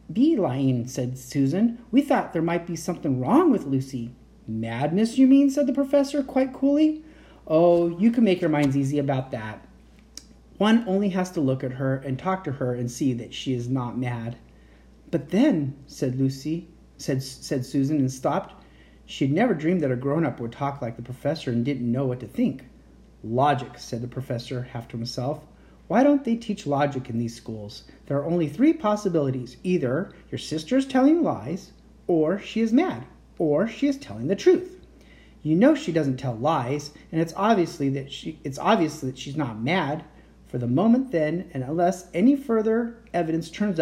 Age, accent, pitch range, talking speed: 30-49, American, 130-200 Hz, 190 wpm